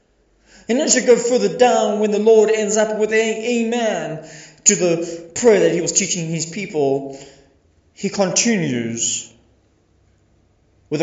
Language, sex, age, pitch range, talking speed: English, male, 20-39, 140-220 Hz, 140 wpm